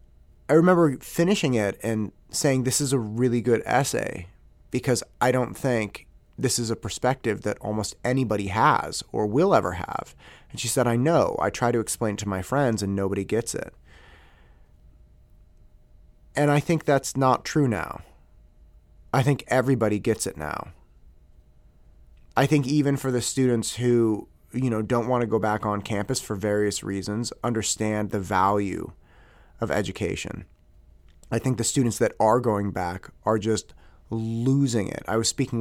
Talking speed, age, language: 165 wpm, 30-49, English